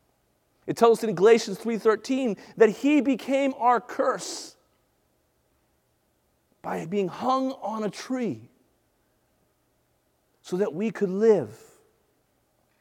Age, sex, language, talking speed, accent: 40-59, male, English, 105 wpm, American